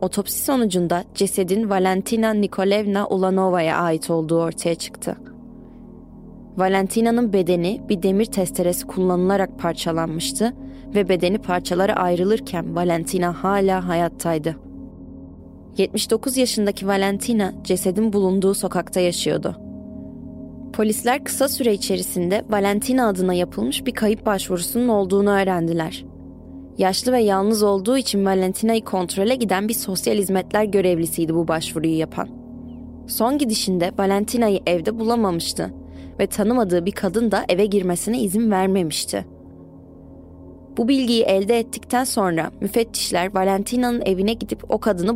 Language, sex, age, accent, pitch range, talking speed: Turkish, female, 20-39, native, 175-220 Hz, 110 wpm